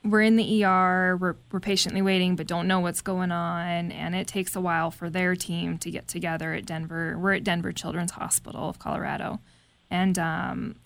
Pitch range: 165-195 Hz